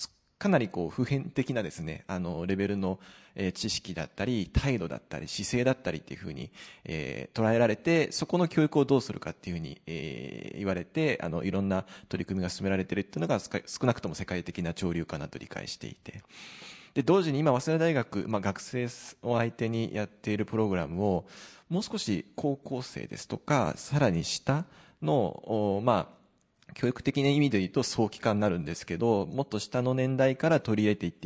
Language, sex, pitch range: Japanese, male, 95-135 Hz